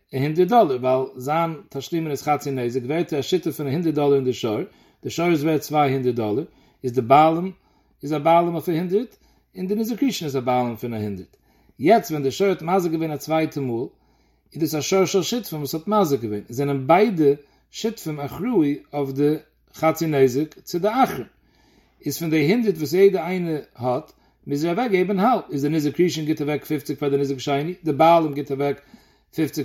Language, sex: English, male